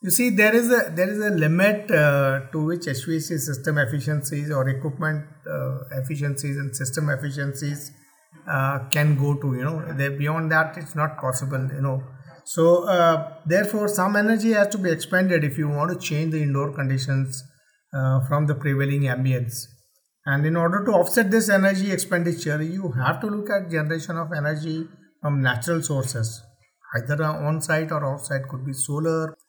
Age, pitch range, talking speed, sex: 50-69, 140-170 Hz, 170 wpm, male